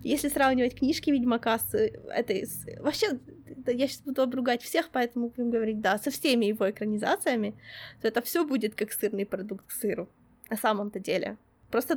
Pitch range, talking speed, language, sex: 230-295 Hz, 170 wpm, Ukrainian, female